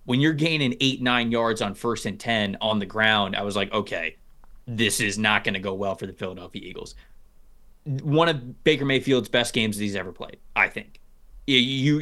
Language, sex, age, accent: English, male, 20-39, American